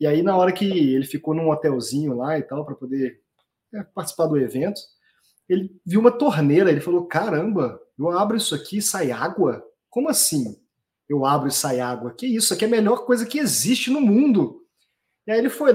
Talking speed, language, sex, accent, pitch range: 200 wpm, Portuguese, male, Brazilian, 155-215 Hz